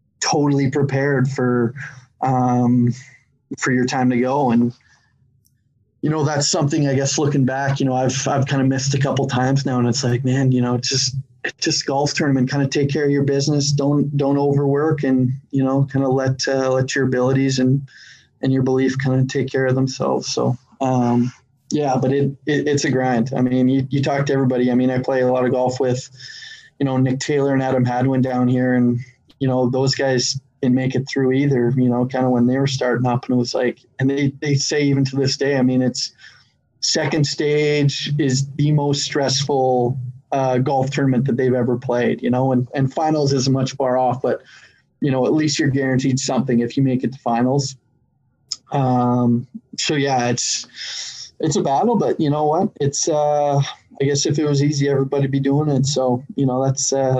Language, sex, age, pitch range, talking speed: English, male, 20-39, 125-140 Hz, 215 wpm